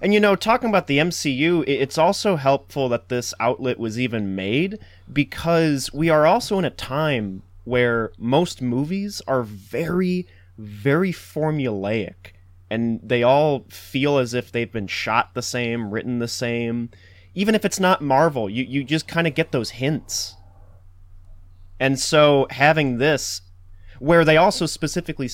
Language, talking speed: English, 155 wpm